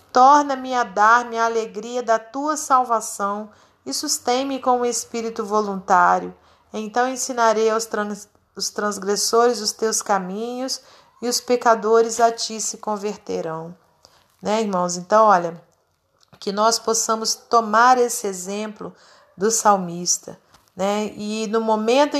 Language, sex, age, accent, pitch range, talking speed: Portuguese, female, 40-59, Brazilian, 200-235 Hz, 125 wpm